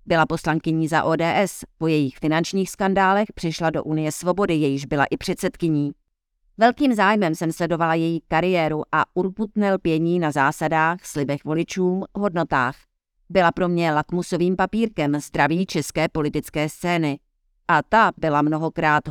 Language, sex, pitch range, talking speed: Czech, female, 155-185 Hz, 135 wpm